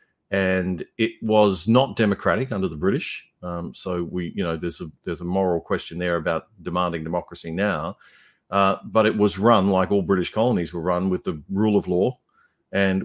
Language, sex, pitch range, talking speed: English, male, 85-100 Hz, 190 wpm